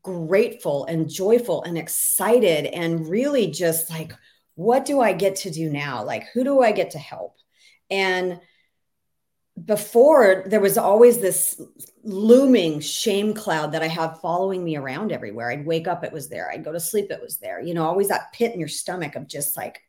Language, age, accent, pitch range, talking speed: English, 40-59, American, 155-220 Hz, 190 wpm